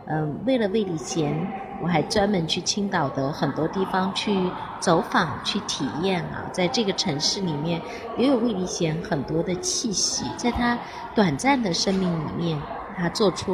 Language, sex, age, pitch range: Chinese, female, 30-49, 165-225 Hz